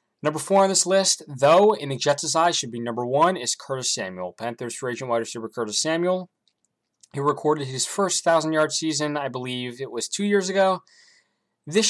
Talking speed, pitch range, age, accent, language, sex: 190 wpm, 115-155 Hz, 20-39, American, English, male